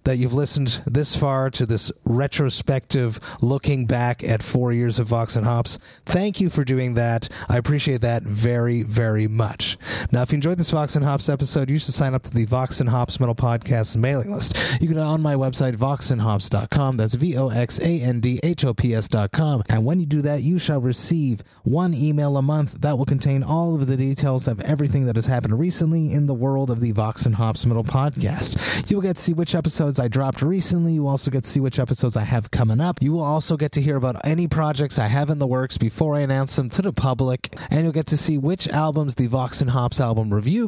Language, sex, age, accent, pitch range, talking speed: English, male, 30-49, American, 125-155 Hz, 215 wpm